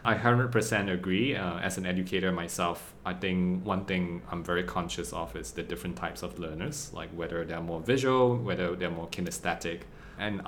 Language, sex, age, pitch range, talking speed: English, male, 20-39, 85-100 Hz, 185 wpm